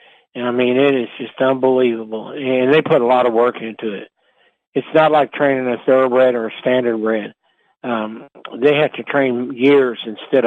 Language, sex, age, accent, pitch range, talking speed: English, male, 60-79, American, 120-140 Hz, 185 wpm